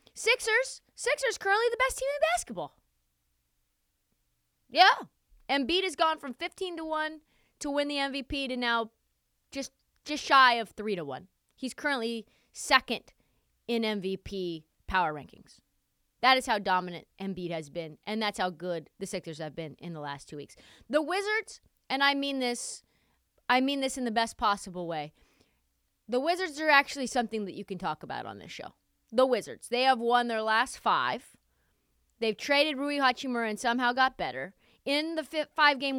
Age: 20-39